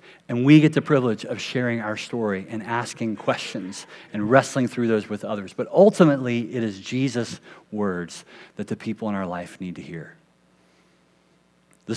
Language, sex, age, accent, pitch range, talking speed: English, male, 40-59, American, 100-130 Hz, 170 wpm